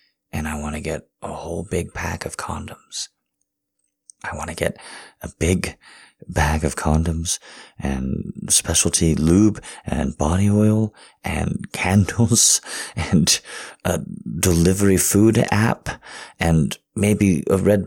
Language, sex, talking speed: English, male, 125 wpm